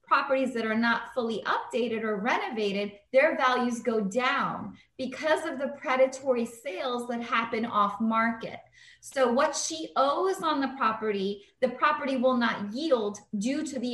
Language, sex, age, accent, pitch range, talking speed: English, female, 20-39, American, 220-260 Hz, 155 wpm